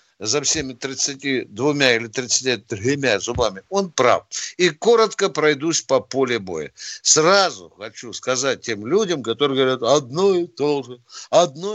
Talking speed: 145 wpm